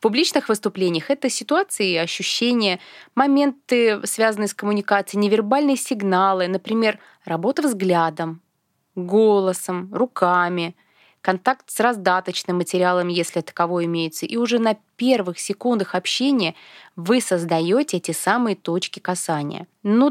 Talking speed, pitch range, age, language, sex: 110 wpm, 175-240 Hz, 20-39, Russian, female